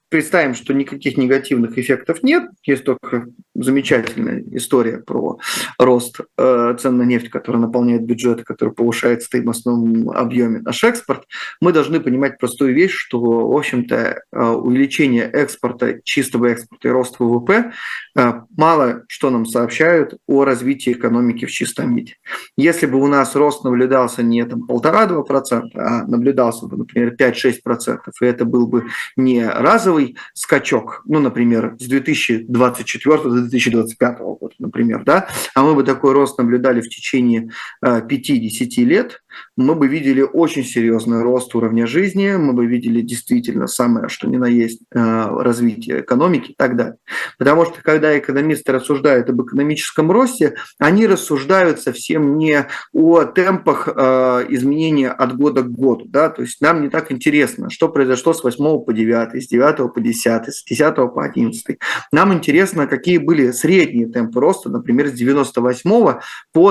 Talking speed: 145 wpm